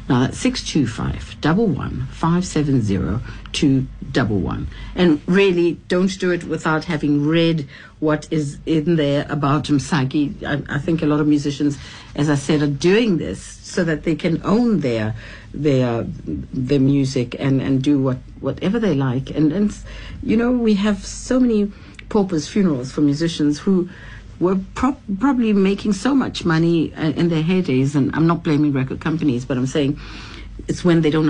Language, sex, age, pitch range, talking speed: English, female, 60-79, 120-170 Hz, 175 wpm